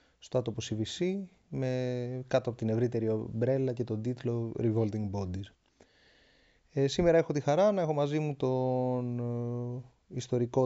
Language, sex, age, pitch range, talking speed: Greek, male, 20-39, 115-160 Hz, 145 wpm